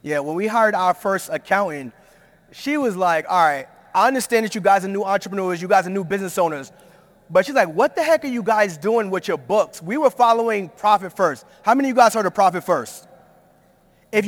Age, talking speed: 30-49, 225 wpm